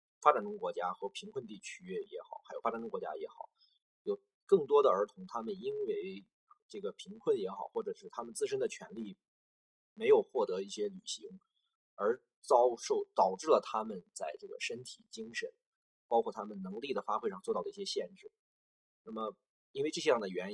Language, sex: Chinese, male